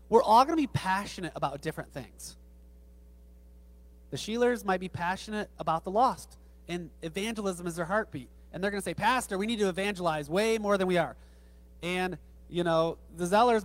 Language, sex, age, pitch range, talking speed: English, male, 30-49, 145-210 Hz, 185 wpm